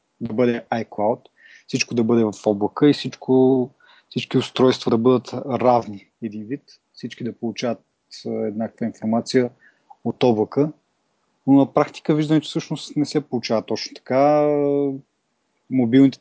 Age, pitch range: 30-49, 110-130 Hz